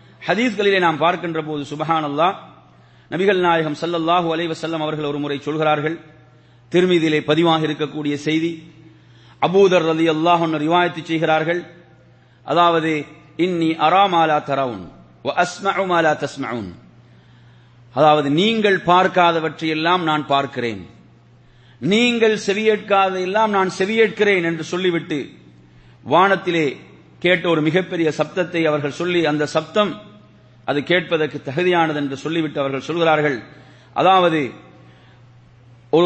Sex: male